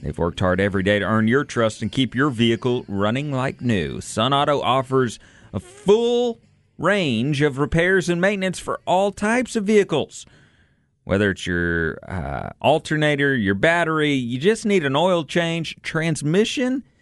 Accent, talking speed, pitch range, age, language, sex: American, 160 wpm, 115-165 Hz, 40-59, English, male